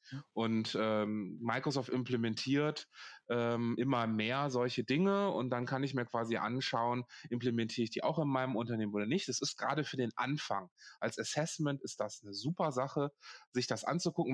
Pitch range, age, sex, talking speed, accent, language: 115-140 Hz, 20-39, male, 170 wpm, German, German